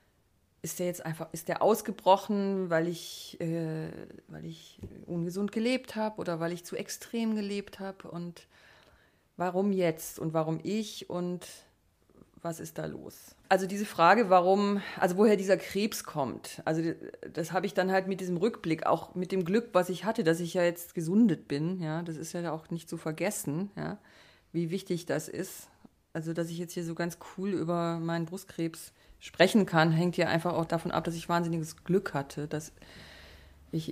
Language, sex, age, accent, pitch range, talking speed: German, female, 30-49, German, 165-190 Hz, 180 wpm